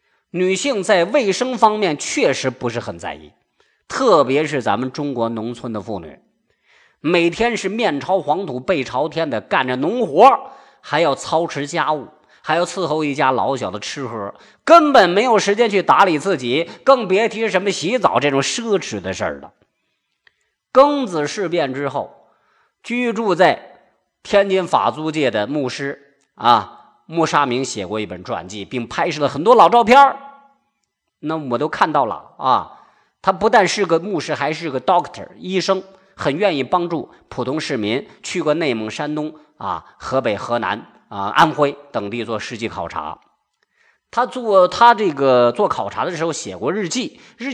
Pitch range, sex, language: 130-200 Hz, male, Chinese